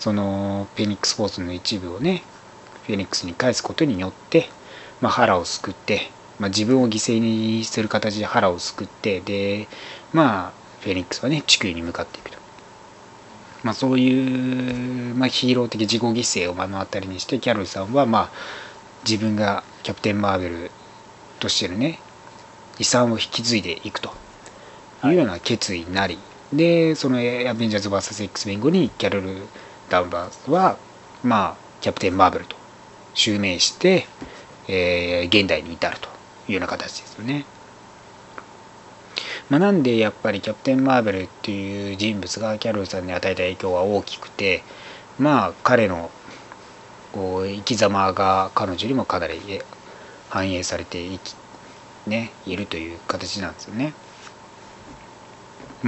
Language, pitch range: Japanese, 95-120 Hz